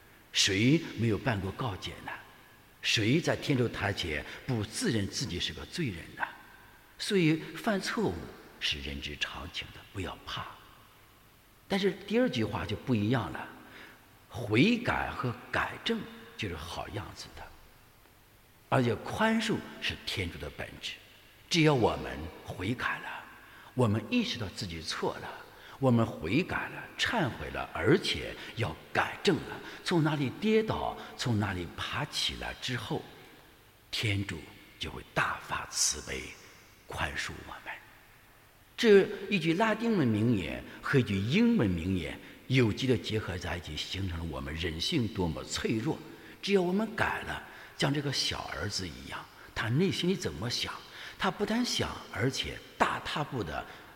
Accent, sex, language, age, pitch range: Chinese, male, English, 60-79, 95-160 Hz